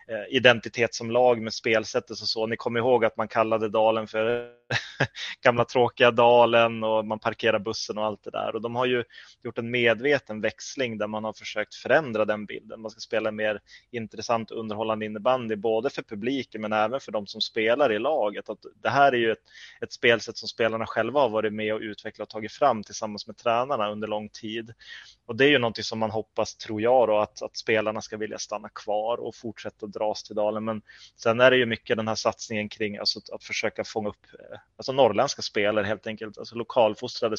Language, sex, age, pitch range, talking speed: Swedish, male, 20-39, 105-115 Hz, 205 wpm